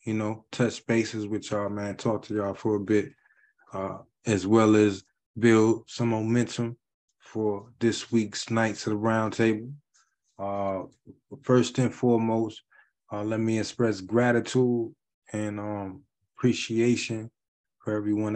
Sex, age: male, 20-39